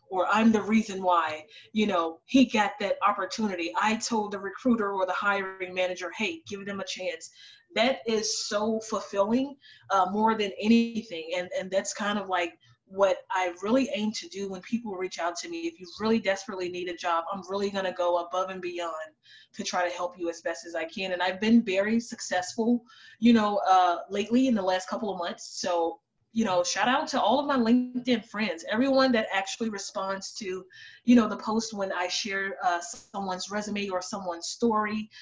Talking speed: 200 wpm